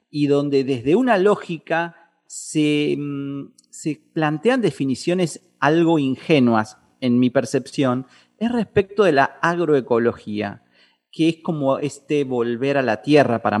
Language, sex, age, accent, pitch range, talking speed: Spanish, male, 40-59, Argentinian, 125-190 Hz, 125 wpm